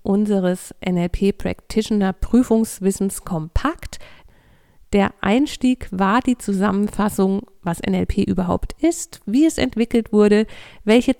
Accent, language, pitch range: German, German, 190-235 Hz